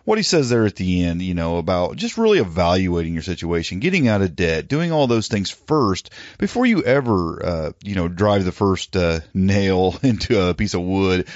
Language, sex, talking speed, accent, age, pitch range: English, male, 210 wpm, American, 40-59, 85-115 Hz